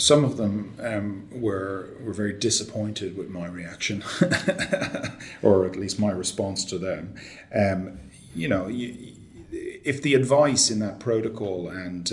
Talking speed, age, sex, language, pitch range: 145 wpm, 40-59, male, English, 90-105 Hz